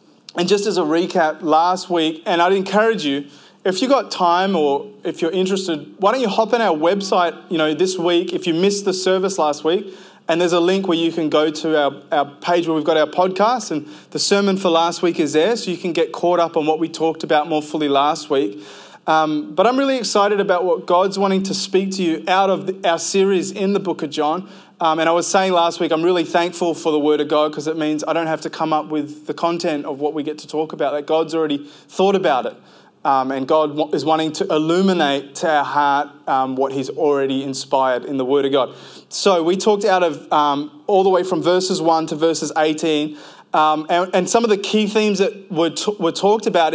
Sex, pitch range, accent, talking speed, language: male, 155-185 Hz, Australian, 240 wpm, English